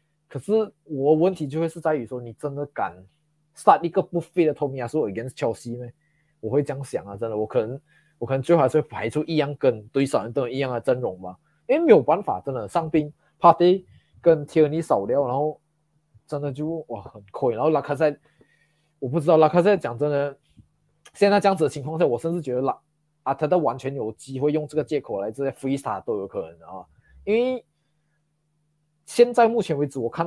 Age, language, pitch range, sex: 20-39, Chinese, 130-160 Hz, male